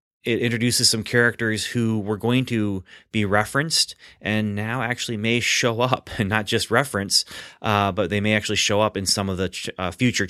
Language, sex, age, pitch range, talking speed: English, male, 30-49, 95-110 Hz, 200 wpm